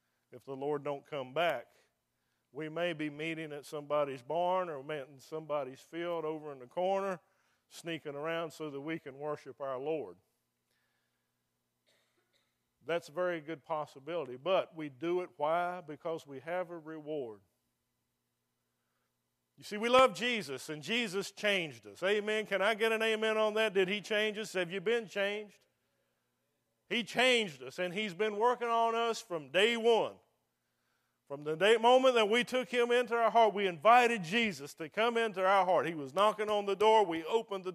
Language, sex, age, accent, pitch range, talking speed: English, male, 50-69, American, 145-215 Hz, 175 wpm